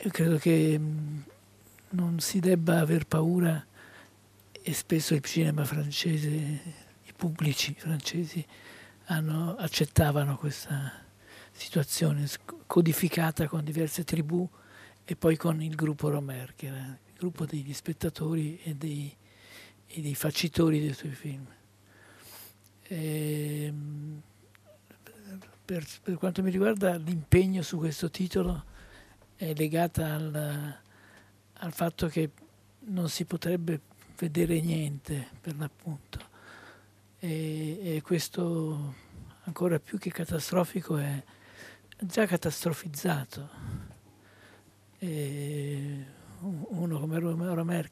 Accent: native